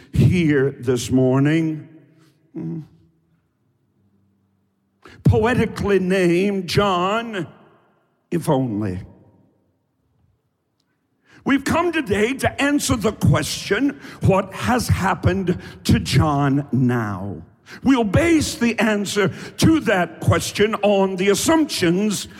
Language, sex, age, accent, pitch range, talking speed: English, male, 50-69, American, 150-220 Hz, 85 wpm